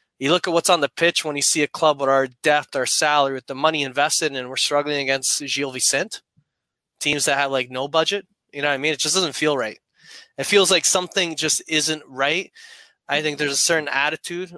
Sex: male